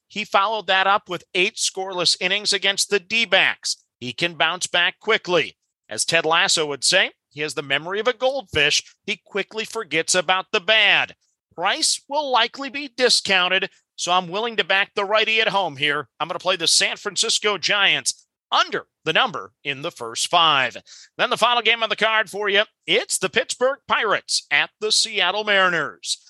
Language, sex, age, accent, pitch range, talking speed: English, male, 40-59, American, 170-215 Hz, 185 wpm